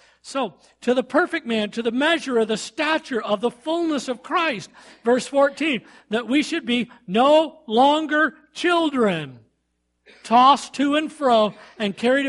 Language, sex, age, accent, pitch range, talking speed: English, male, 50-69, American, 170-245 Hz, 150 wpm